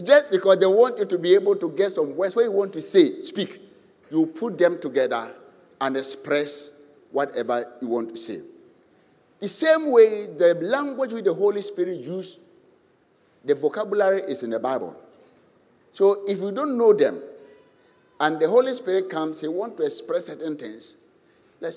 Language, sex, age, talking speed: English, male, 60-79, 175 wpm